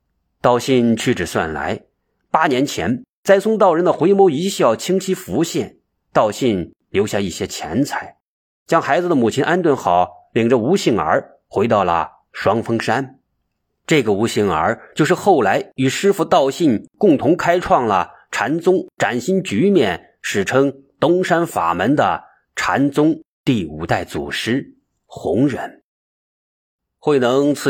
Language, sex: Chinese, male